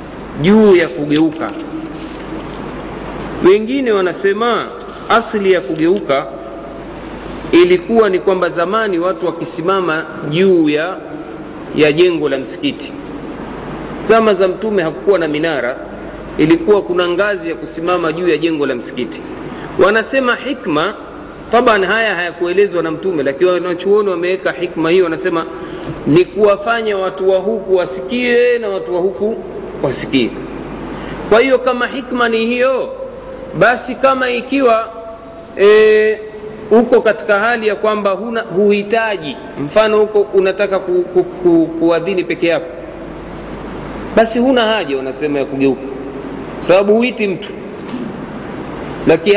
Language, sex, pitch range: Swahili, male, 175-225 Hz